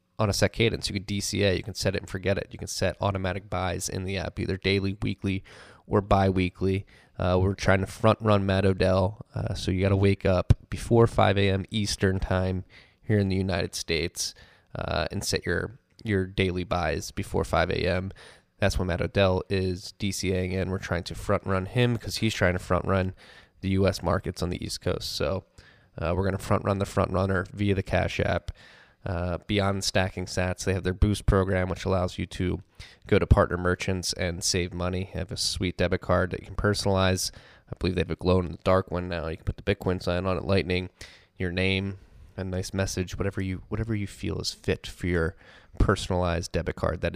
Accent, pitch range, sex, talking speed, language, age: American, 90-100 Hz, male, 215 wpm, English, 20-39